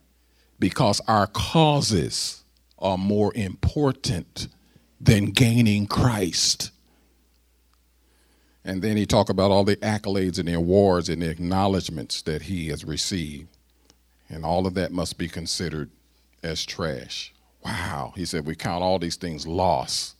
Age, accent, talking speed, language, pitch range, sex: 50-69, American, 135 wpm, English, 85-115 Hz, male